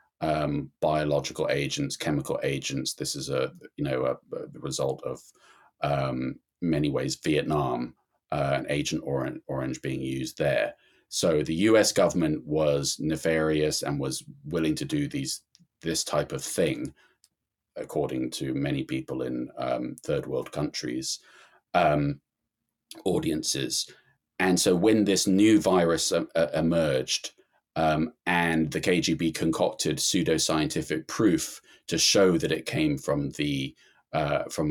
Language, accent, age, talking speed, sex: English, British, 30-49, 130 wpm, male